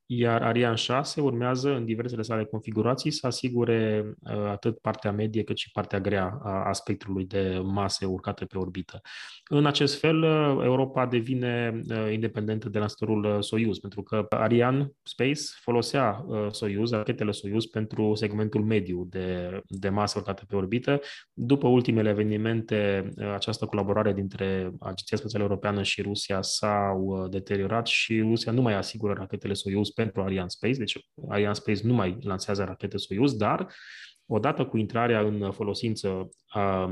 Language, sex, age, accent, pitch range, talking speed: Romanian, male, 20-39, native, 100-120 Hz, 145 wpm